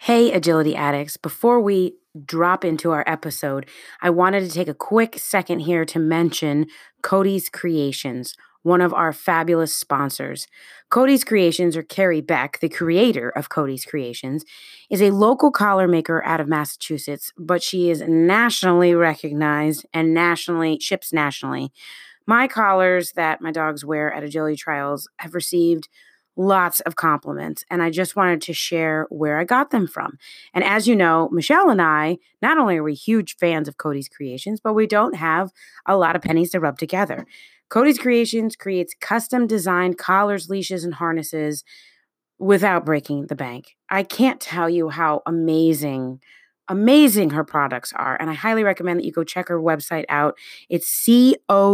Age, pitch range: 30-49, 155-195 Hz